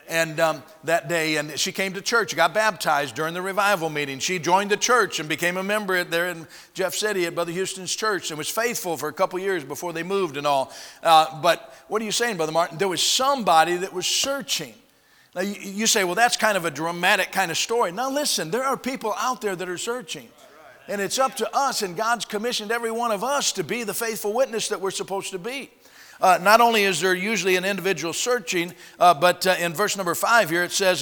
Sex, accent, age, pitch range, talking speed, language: male, American, 50-69, 165-210 Hz, 235 wpm, English